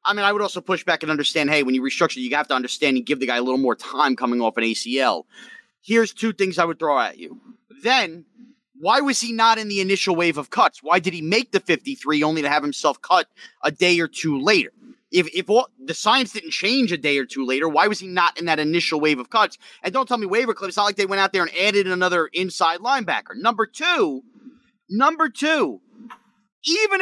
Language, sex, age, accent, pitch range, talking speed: English, male, 30-49, American, 175-245 Hz, 240 wpm